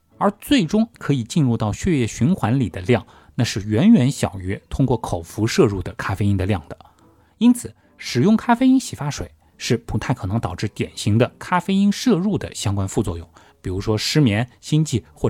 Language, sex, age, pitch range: Chinese, male, 20-39, 100-150 Hz